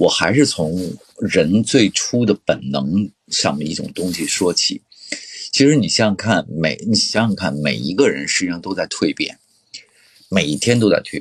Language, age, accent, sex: Chinese, 50-69, native, male